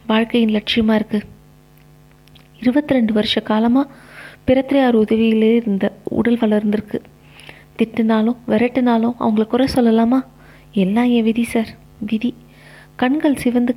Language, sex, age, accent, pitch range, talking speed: Tamil, female, 20-39, native, 215-250 Hz, 105 wpm